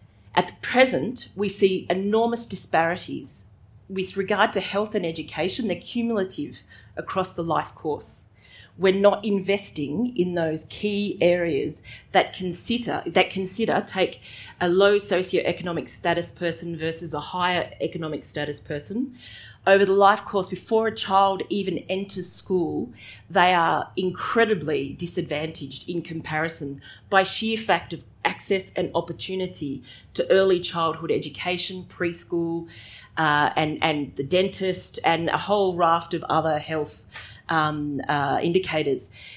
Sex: female